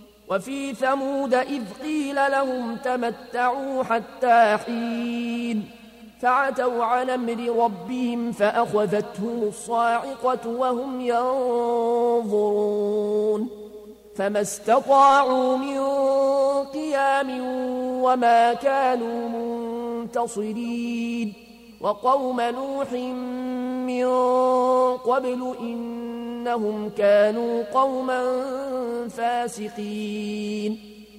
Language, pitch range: Arabic, 230-255 Hz